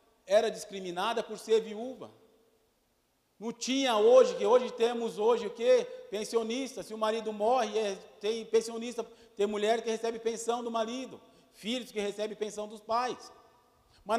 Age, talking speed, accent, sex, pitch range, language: 40-59, 150 wpm, Brazilian, male, 225-275 Hz, Portuguese